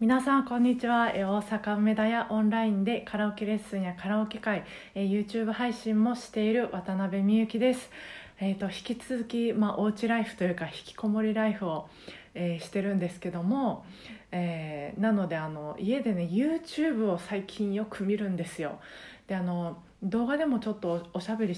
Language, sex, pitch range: Japanese, female, 175-225 Hz